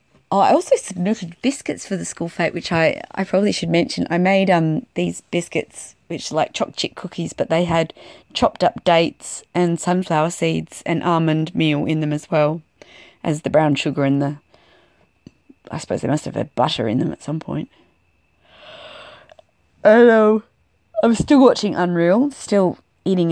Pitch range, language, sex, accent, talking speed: 155-180 Hz, English, female, Australian, 170 wpm